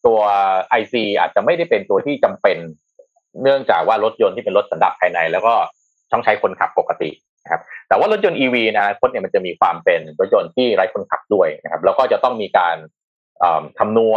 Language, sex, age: Thai, male, 30-49